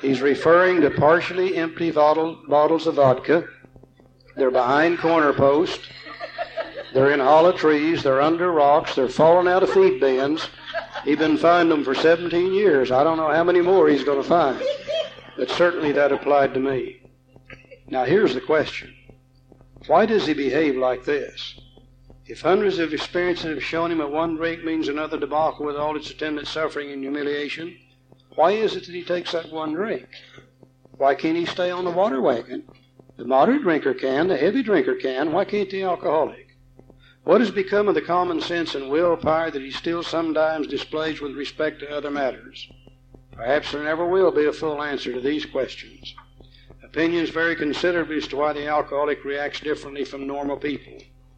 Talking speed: 175 wpm